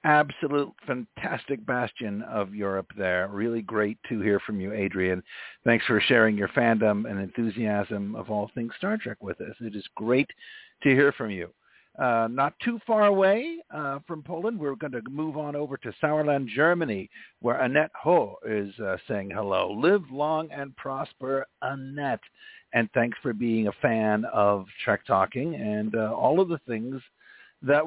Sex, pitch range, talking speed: male, 105-160 Hz, 170 wpm